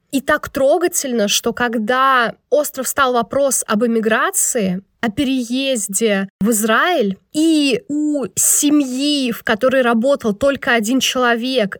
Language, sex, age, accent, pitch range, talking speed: Russian, female, 20-39, native, 220-270 Hz, 115 wpm